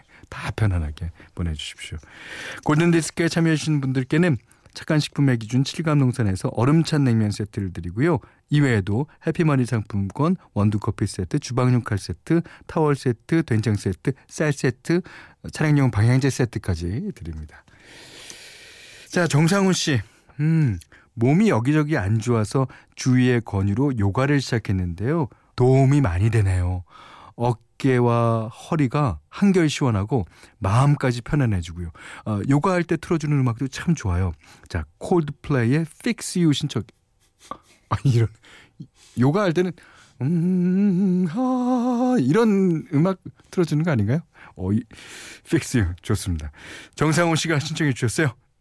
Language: Korean